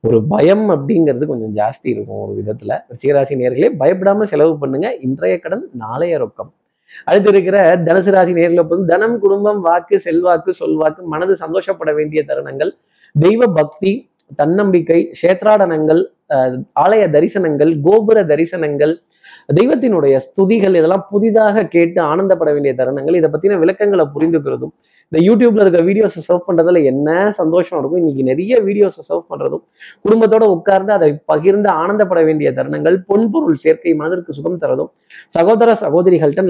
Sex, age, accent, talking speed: male, 20-39, native, 130 wpm